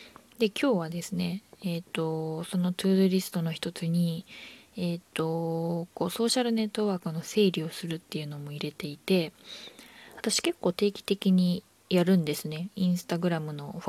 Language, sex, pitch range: Japanese, female, 170-220 Hz